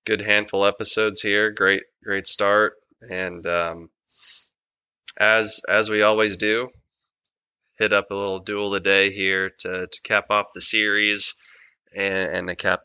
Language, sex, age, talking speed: English, male, 20-39, 155 wpm